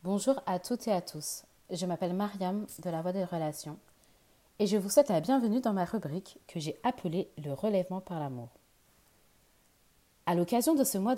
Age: 30-49